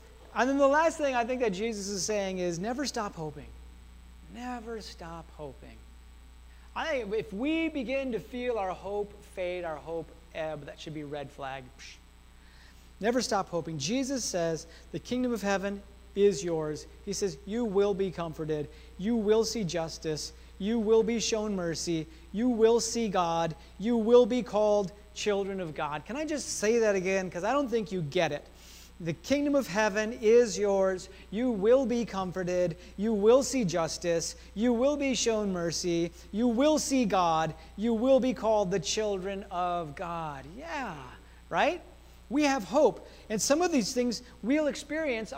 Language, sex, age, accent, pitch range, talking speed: English, male, 30-49, American, 155-235 Hz, 170 wpm